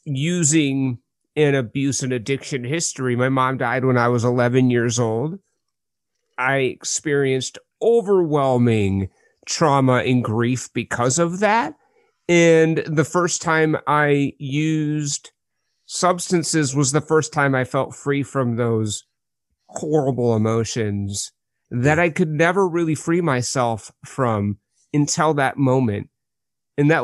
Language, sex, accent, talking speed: English, male, American, 120 wpm